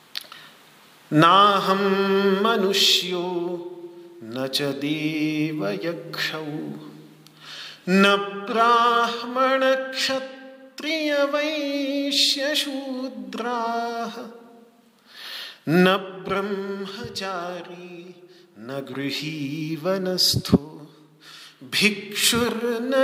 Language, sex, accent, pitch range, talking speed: Hindi, male, native, 155-235 Hz, 30 wpm